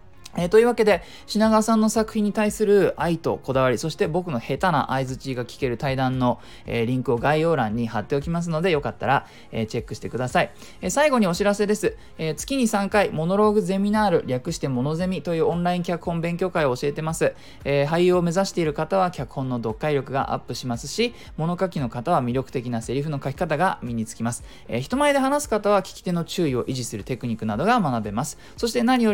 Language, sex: Japanese, male